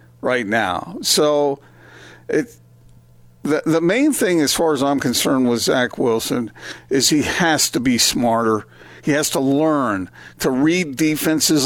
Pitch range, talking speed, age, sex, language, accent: 125-155 Hz, 150 wpm, 50-69, male, English, American